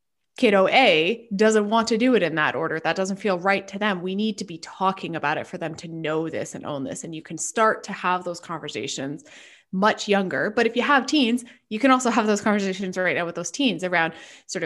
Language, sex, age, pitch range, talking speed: English, female, 20-39, 165-225 Hz, 240 wpm